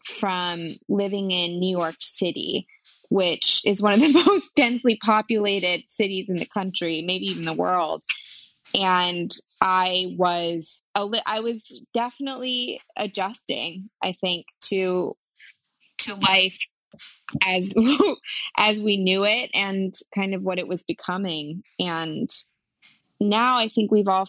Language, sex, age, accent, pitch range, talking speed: English, female, 20-39, American, 180-210 Hz, 130 wpm